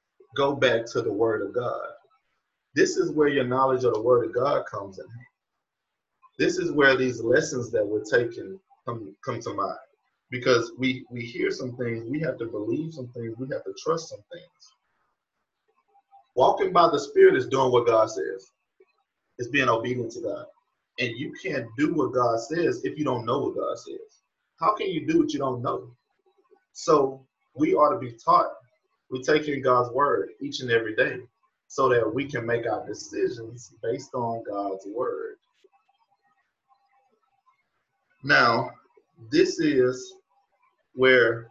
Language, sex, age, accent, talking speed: English, male, 30-49, American, 165 wpm